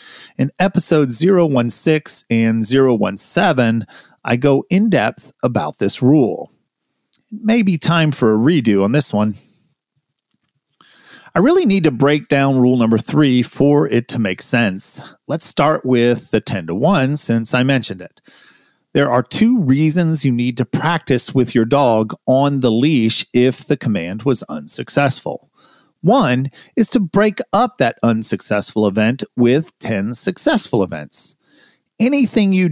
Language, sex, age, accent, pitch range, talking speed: English, male, 40-59, American, 115-165 Hz, 145 wpm